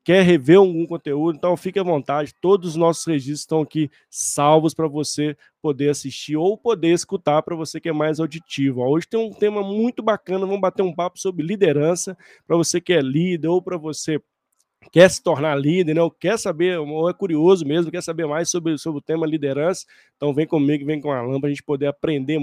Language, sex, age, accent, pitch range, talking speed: Portuguese, male, 20-39, Brazilian, 145-175 Hz, 215 wpm